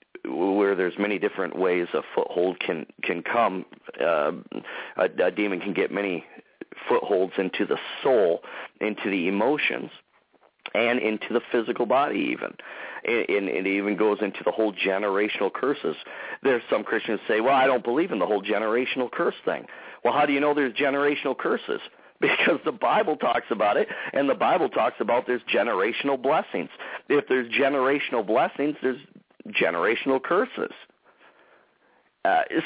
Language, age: English, 50-69